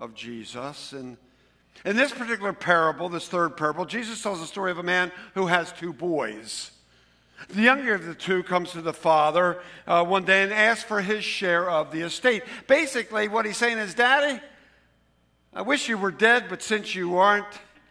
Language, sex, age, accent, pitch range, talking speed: English, male, 60-79, American, 120-195 Hz, 190 wpm